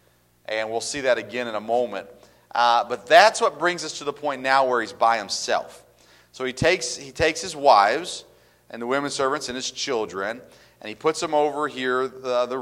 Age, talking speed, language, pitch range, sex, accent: 40-59, 210 wpm, English, 110-145 Hz, male, American